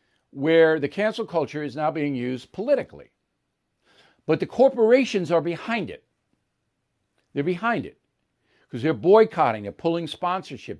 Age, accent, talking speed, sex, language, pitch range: 60-79, American, 135 wpm, male, English, 155-230 Hz